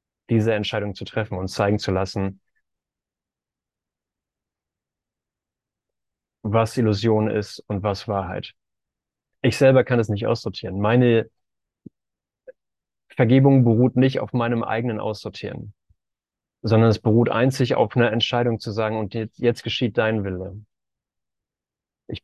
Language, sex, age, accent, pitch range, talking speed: German, male, 30-49, German, 105-120 Hz, 120 wpm